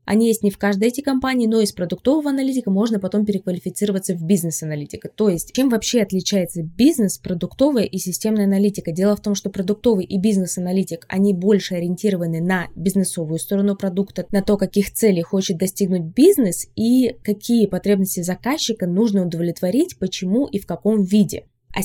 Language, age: Russian, 20-39